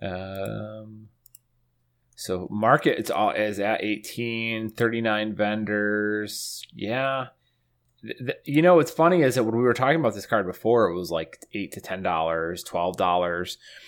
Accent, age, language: American, 30-49, English